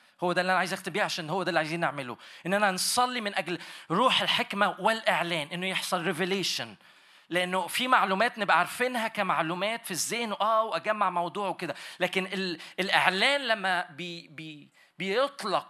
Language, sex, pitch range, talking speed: Arabic, male, 175-230 Hz, 155 wpm